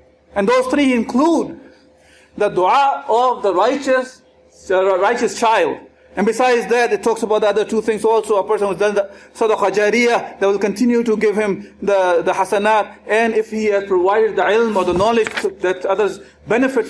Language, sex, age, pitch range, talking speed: English, male, 40-59, 215-285 Hz, 185 wpm